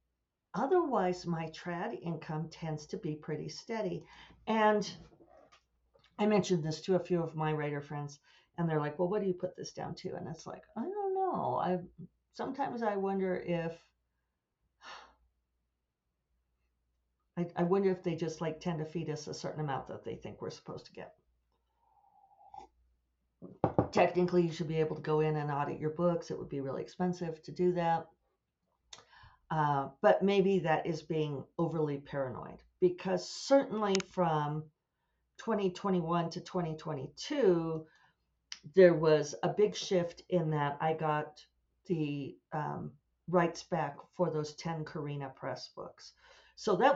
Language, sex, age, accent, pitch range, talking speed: English, female, 50-69, American, 150-180 Hz, 150 wpm